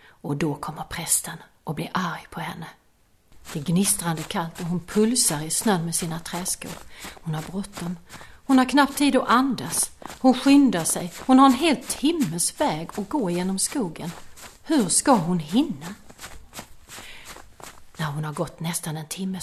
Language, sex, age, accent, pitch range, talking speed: Swedish, female, 40-59, native, 160-255 Hz, 165 wpm